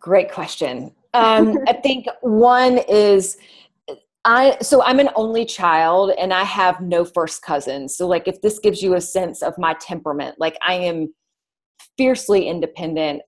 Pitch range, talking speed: 165-215 Hz, 160 wpm